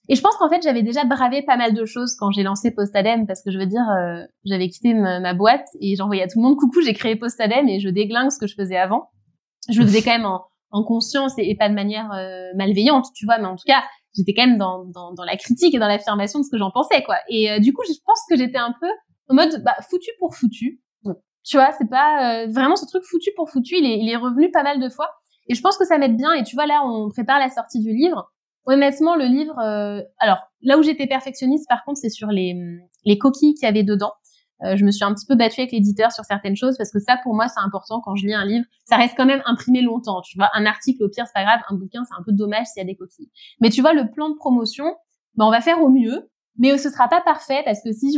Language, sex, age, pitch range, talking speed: English, female, 20-39, 205-270 Hz, 290 wpm